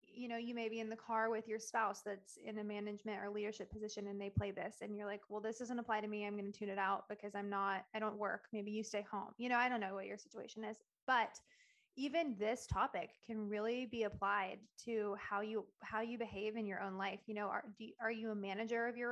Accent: American